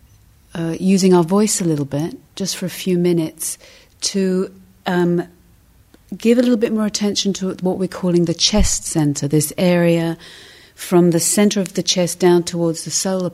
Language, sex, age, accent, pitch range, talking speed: English, female, 40-59, British, 160-190 Hz, 175 wpm